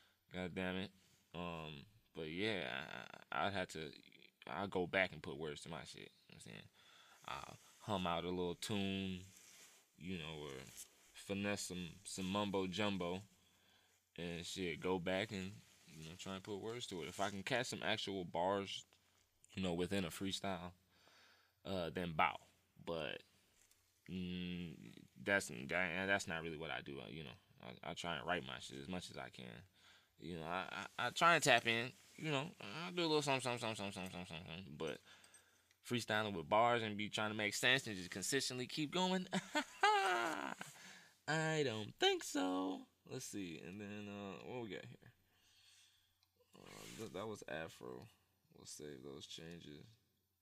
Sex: male